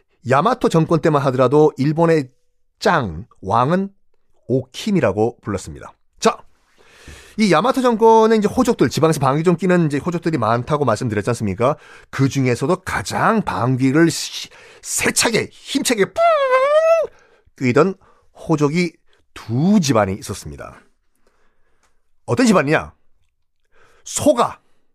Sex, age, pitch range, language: male, 40-59, 130-215 Hz, Korean